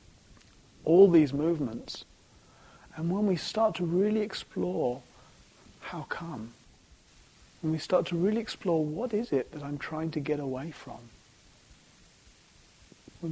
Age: 40-59